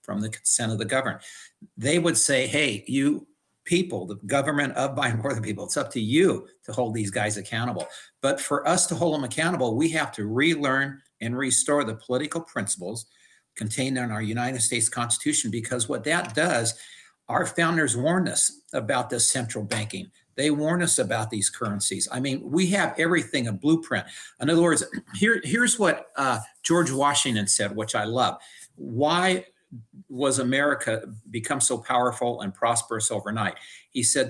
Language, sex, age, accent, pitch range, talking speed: English, male, 50-69, American, 115-150 Hz, 175 wpm